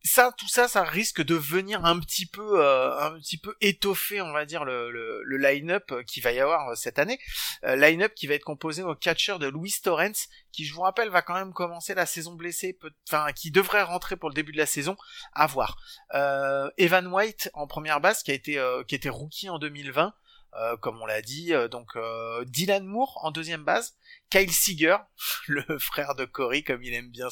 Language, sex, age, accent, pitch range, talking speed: French, male, 30-49, French, 130-175 Hz, 225 wpm